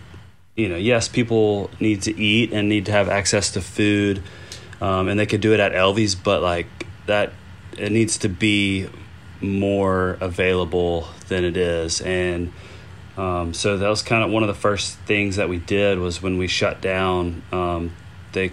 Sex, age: male, 30-49